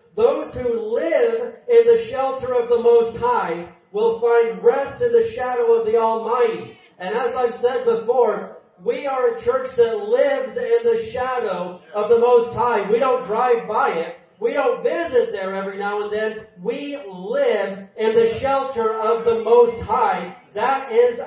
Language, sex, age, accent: English, male, 40-59, American